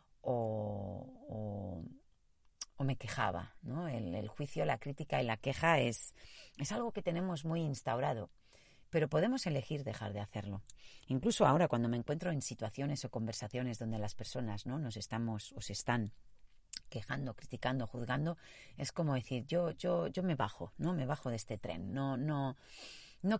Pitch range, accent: 110-145 Hz, Spanish